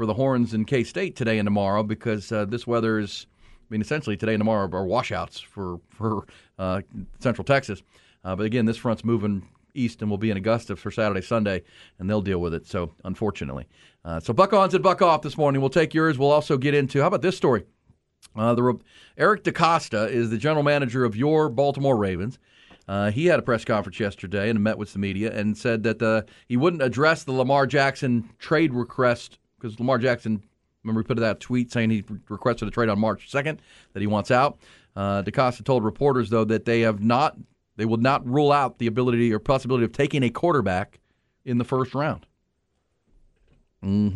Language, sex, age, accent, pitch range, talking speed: English, male, 40-59, American, 105-135 Hz, 200 wpm